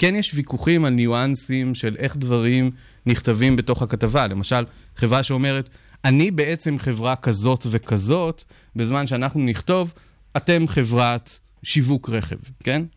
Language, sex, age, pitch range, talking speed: Hebrew, male, 20-39, 120-150 Hz, 125 wpm